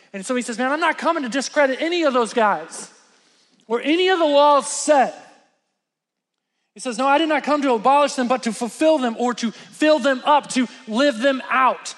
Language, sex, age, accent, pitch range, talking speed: English, male, 20-39, American, 230-280 Hz, 215 wpm